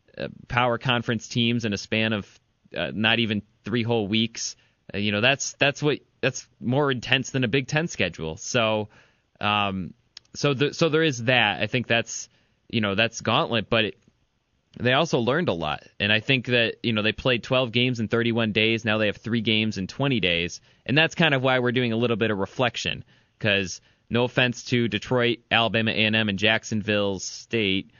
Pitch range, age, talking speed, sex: 105-125 Hz, 20-39, 200 wpm, male